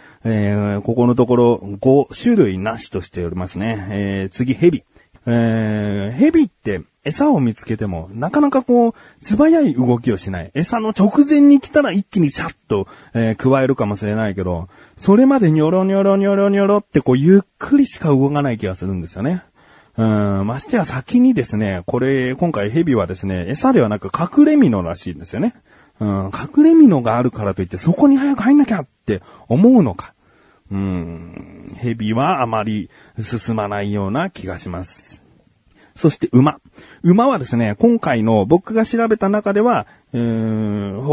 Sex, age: male, 30-49